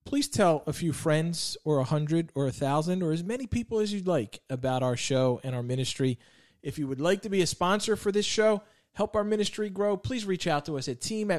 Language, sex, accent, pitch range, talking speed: English, male, American, 135-180 Hz, 240 wpm